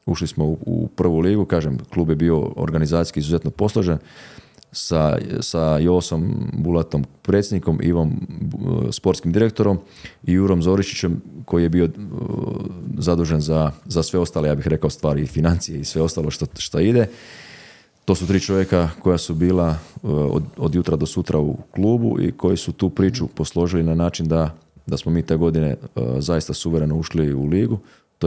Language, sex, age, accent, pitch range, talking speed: Croatian, male, 30-49, native, 80-95 Hz, 165 wpm